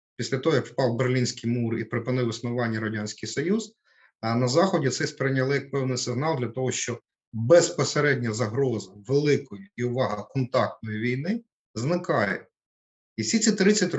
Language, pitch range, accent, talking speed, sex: Ukrainian, 115-155 Hz, native, 135 wpm, male